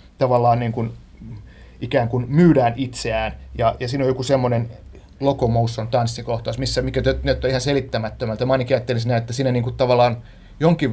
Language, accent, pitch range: Finnish, native, 115-140 Hz